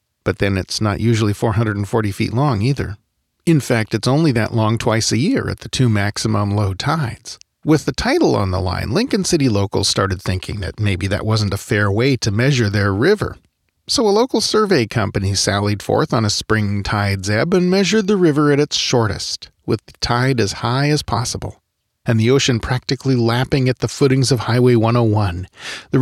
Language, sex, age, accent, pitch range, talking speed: English, male, 40-59, American, 105-135 Hz, 195 wpm